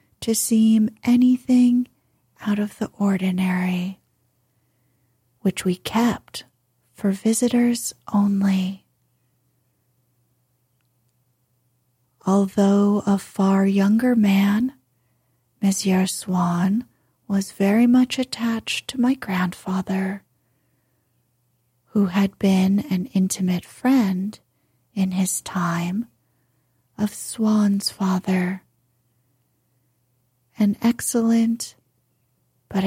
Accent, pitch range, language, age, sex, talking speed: American, 125-215 Hz, English, 40-59, female, 75 wpm